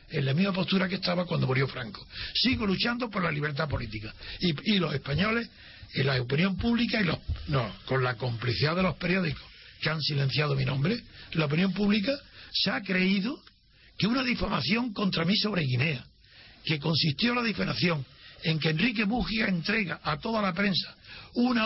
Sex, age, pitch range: male, 60-79, 145-205 Hz